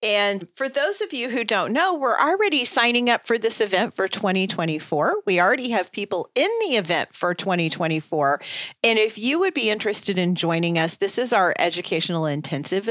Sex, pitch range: female, 175-240 Hz